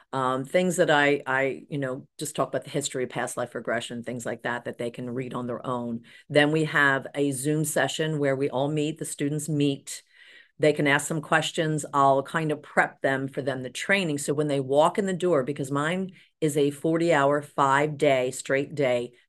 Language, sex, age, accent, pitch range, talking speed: English, female, 40-59, American, 135-155 Hz, 210 wpm